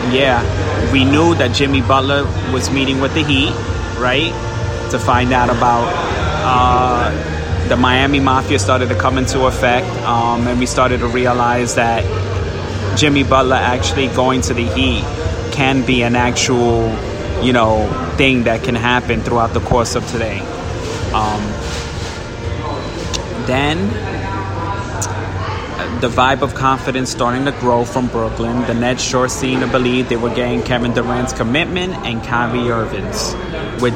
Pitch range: 105-125 Hz